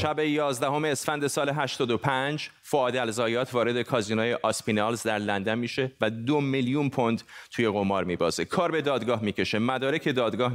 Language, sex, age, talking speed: Persian, male, 30-49, 160 wpm